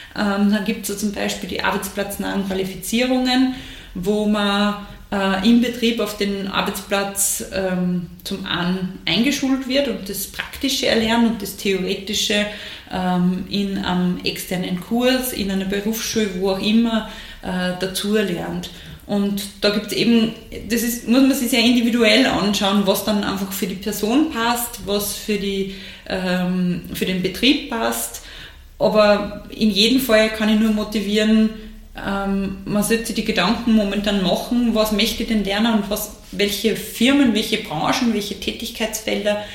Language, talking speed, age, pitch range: German, 150 wpm, 30-49, 195-220 Hz